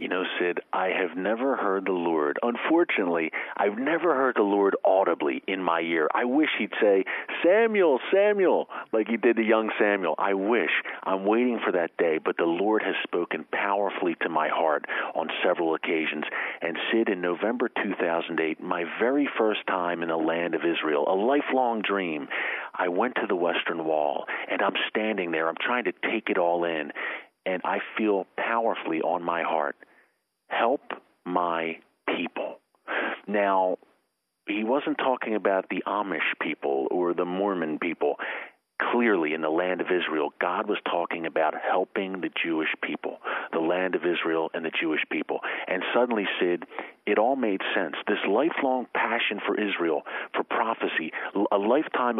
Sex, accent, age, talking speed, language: male, American, 50-69, 165 wpm, English